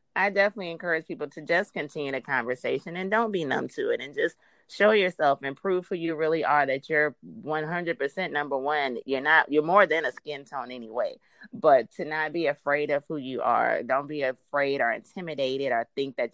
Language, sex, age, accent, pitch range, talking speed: English, female, 30-49, American, 140-185 Hz, 205 wpm